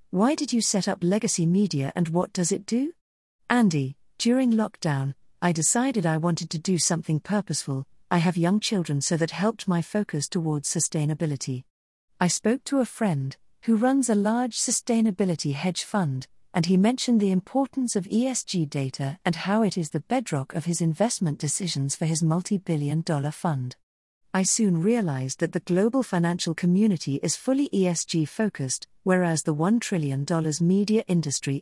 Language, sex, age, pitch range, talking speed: English, female, 50-69, 155-210 Hz, 165 wpm